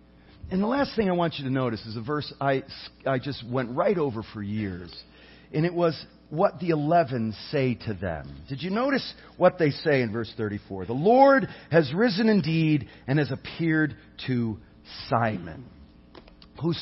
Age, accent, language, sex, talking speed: 40-59, American, English, male, 175 wpm